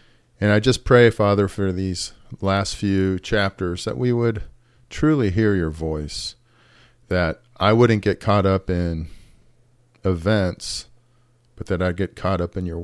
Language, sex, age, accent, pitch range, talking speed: English, male, 40-59, American, 90-120 Hz, 155 wpm